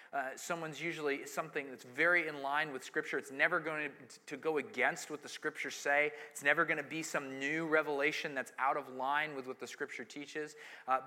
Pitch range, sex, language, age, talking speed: 140-175 Hz, male, English, 30-49, 210 wpm